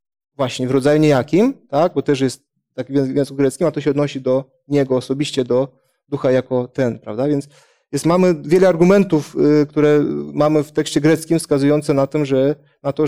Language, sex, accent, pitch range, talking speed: Polish, male, native, 135-165 Hz, 185 wpm